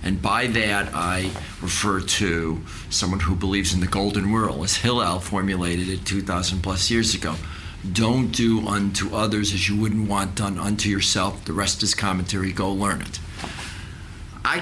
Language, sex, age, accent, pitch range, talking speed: English, male, 50-69, American, 90-110 Hz, 165 wpm